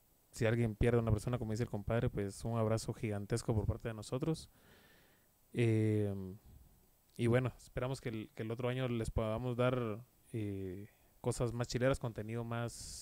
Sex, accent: male, Mexican